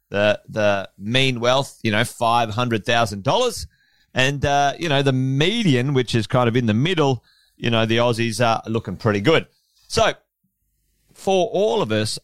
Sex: male